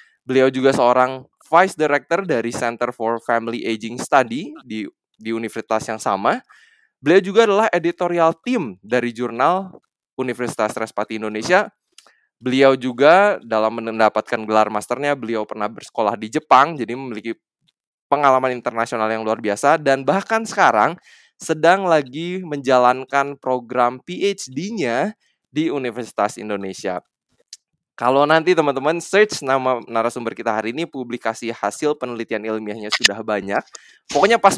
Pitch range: 115-160 Hz